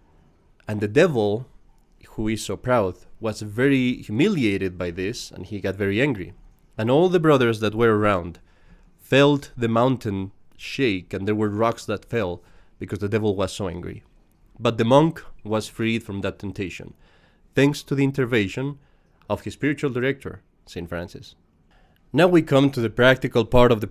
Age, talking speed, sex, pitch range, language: 30-49, 170 wpm, male, 95-130 Hz, English